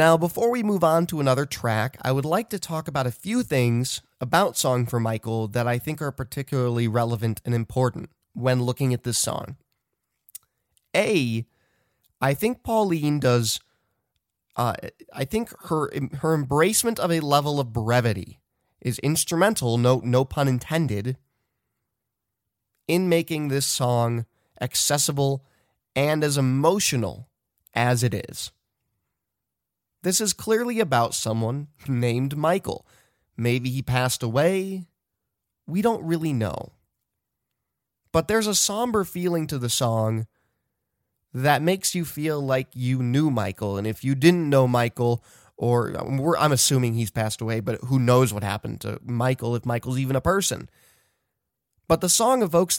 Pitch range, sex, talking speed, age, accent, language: 120-160 Hz, male, 145 wpm, 20-39, American, English